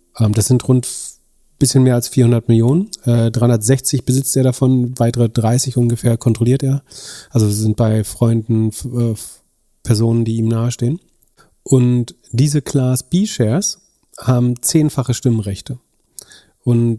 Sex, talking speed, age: male, 125 wpm, 40-59